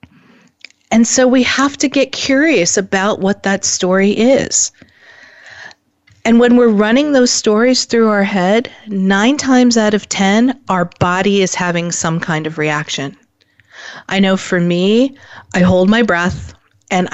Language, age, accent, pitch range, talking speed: English, 40-59, American, 180-235 Hz, 150 wpm